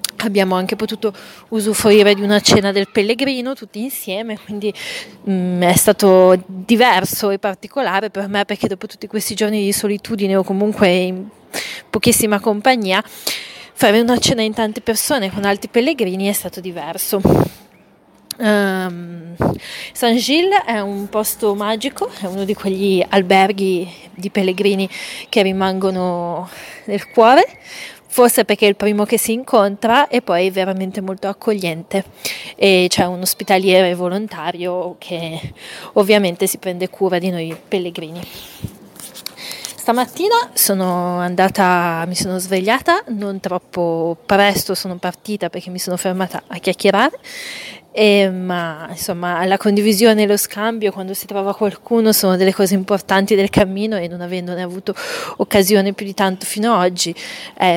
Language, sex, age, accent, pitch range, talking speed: Italian, female, 20-39, native, 185-215 Hz, 140 wpm